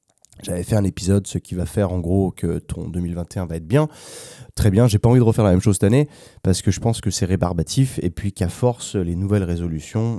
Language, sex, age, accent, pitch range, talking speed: French, male, 20-39, French, 90-115 Hz, 245 wpm